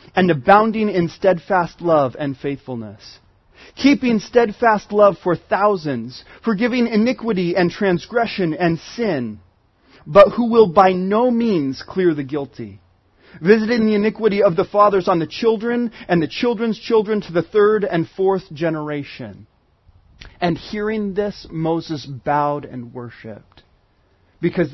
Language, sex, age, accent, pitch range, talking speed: English, male, 30-49, American, 140-215 Hz, 130 wpm